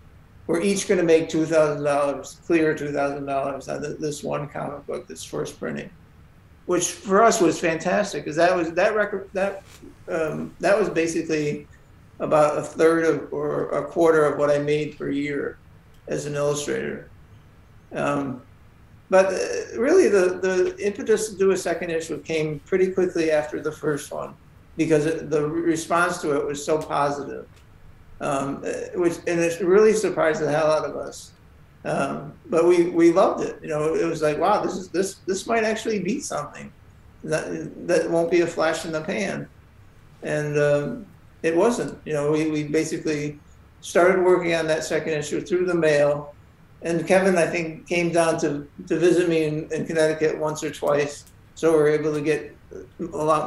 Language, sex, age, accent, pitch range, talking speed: English, male, 60-79, American, 145-175 Hz, 175 wpm